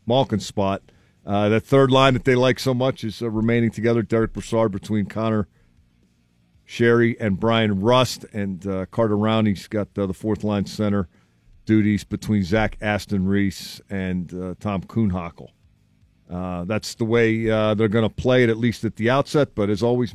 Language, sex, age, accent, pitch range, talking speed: English, male, 50-69, American, 90-115 Hz, 180 wpm